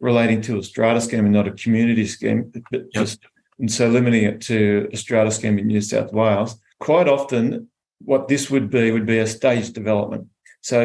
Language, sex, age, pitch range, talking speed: English, male, 40-59, 110-125 Hz, 190 wpm